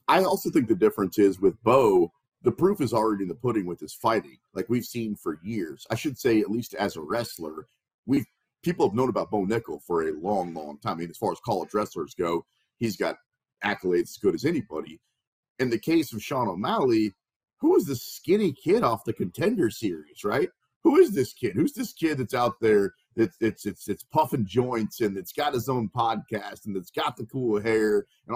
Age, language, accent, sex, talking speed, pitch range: 40-59, English, American, male, 220 wpm, 100-145 Hz